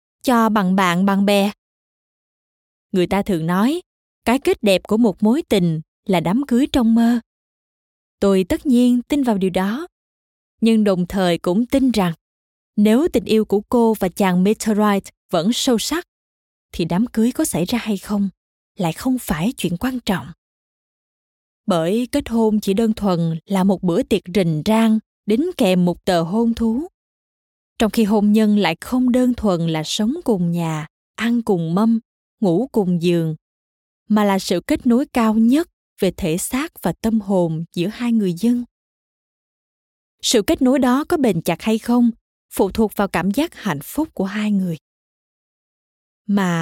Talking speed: 170 wpm